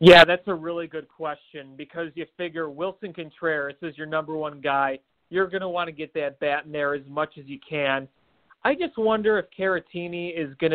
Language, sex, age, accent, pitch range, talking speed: English, male, 30-49, American, 150-195 Hz, 210 wpm